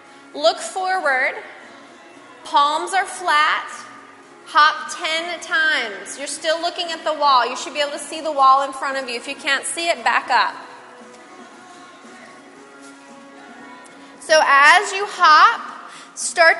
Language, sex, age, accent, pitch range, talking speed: English, female, 30-49, American, 275-335 Hz, 135 wpm